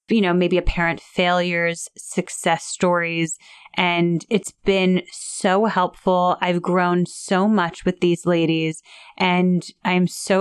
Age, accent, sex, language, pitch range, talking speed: 30-49, American, female, English, 170-210 Hz, 125 wpm